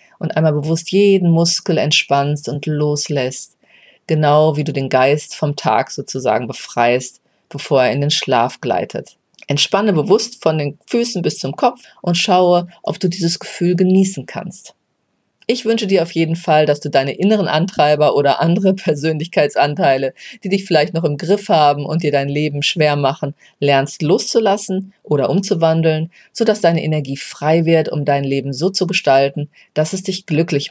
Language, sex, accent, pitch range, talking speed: German, female, German, 145-180 Hz, 165 wpm